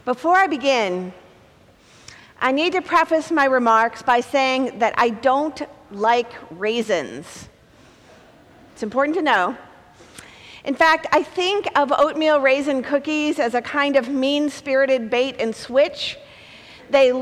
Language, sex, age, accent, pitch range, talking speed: English, female, 40-59, American, 265-335 Hz, 130 wpm